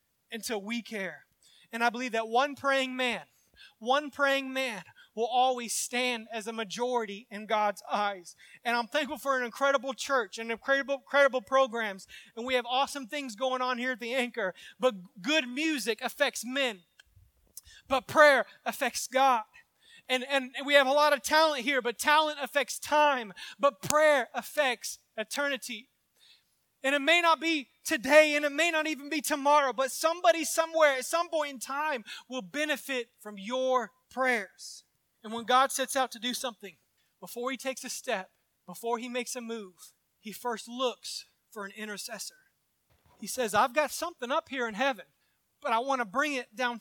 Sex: male